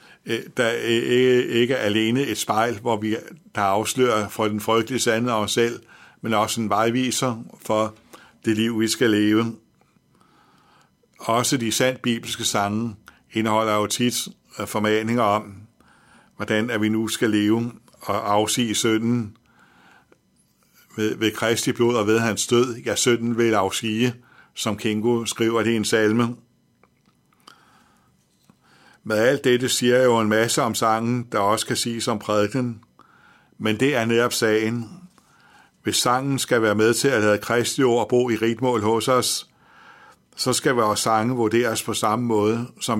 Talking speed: 150 wpm